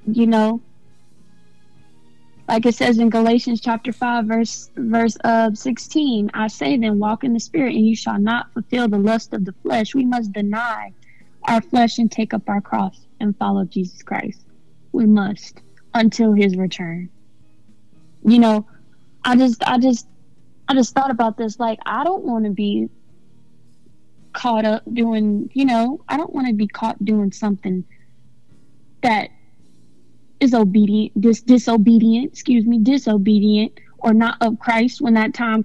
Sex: female